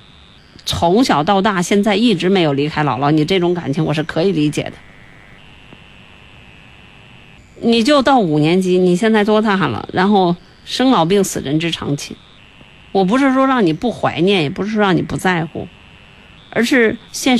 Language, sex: Chinese, female